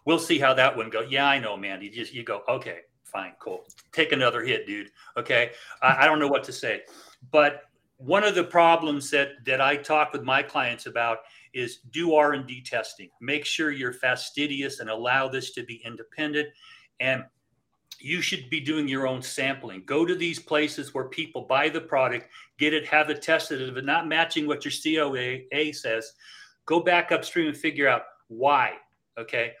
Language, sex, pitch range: English, male, 135-165 Hz